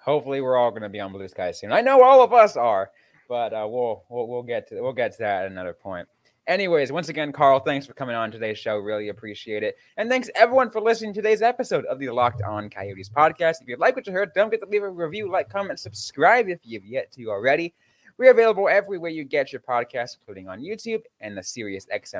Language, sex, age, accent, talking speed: English, male, 20-39, American, 245 wpm